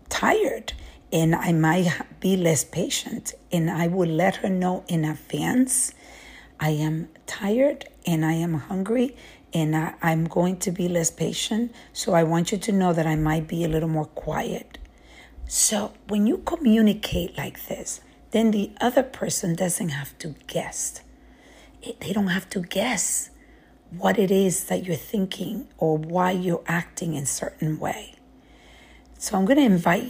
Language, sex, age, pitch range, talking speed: English, female, 50-69, 165-215 Hz, 160 wpm